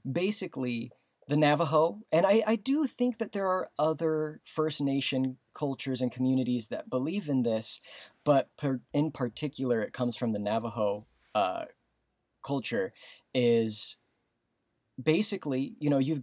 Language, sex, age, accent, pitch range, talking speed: English, male, 20-39, American, 115-145 Hz, 135 wpm